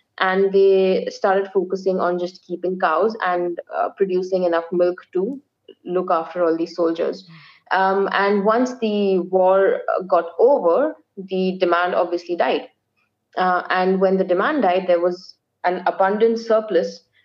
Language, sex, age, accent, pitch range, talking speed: English, female, 20-39, Indian, 175-200 Hz, 145 wpm